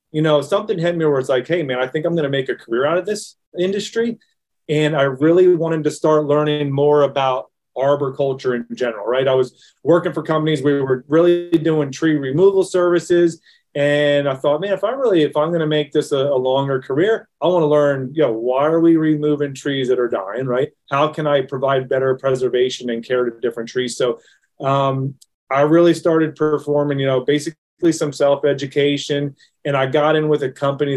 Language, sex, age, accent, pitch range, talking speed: English, male, 30-49, American, 130-155 Hz, 210 wpm